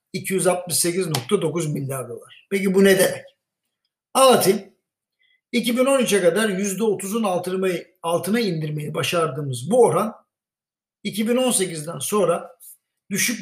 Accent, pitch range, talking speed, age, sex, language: native, 165-220 Hz, 85 wpm, 60-79, male, Turkish